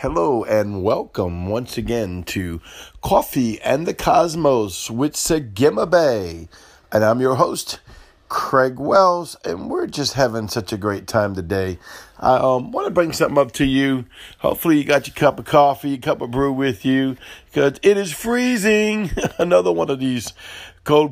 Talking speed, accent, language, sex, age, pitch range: 165 wpm, American, English, male, 50-69, 110-135 Hz